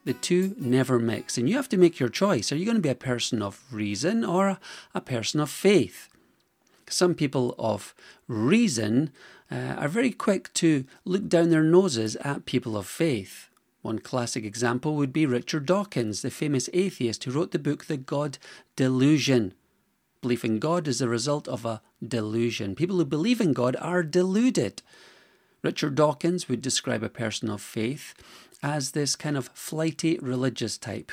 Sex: male